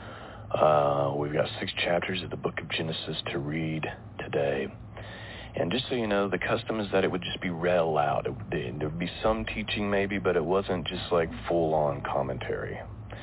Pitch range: 85-110 Hz